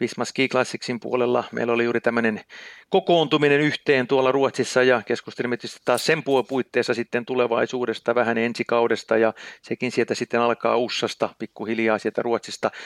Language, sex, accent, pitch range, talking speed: Finnish, male, native, 105-125 Hz, 140 wpm